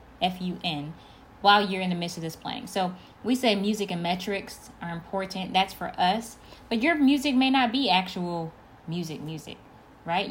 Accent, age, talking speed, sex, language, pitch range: American, 20-39, 175 wpm, female, English, 160-210 Hz